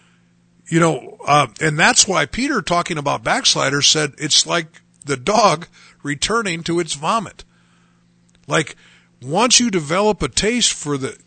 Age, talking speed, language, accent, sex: 50-69, 145 wpm, English, American, male